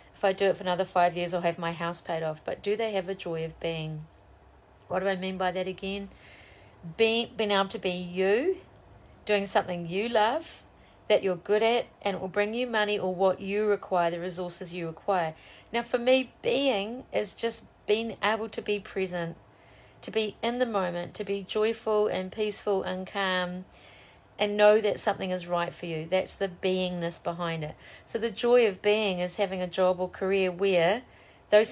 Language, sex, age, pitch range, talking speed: English, female, 40-59, 175-210 Hz, 200 wpm